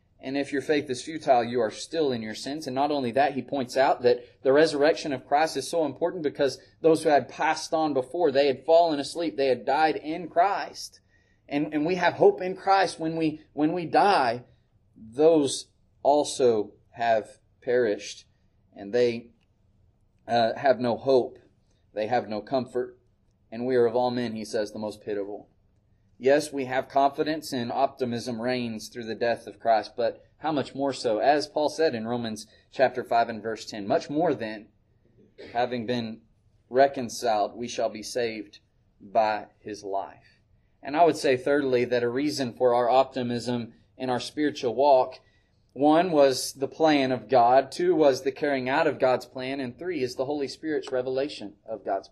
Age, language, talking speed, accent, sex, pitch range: 30-49, English, 180 wpm, American, male, 110-145 Hz